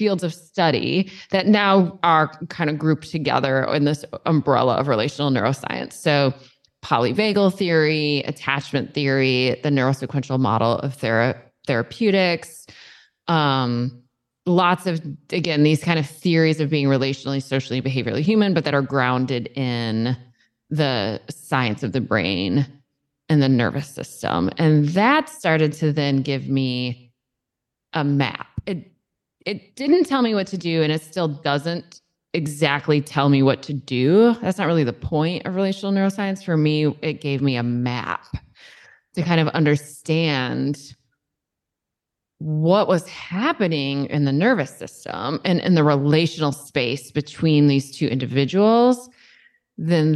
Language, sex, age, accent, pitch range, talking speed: English, female, 20-39, American, 135-175 Hz, 140 wpm